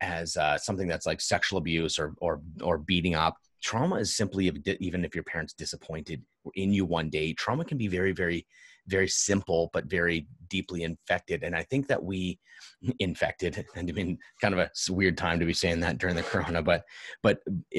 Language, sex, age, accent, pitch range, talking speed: English, male, 30-49, American, 90-120 Hz, 190 wpm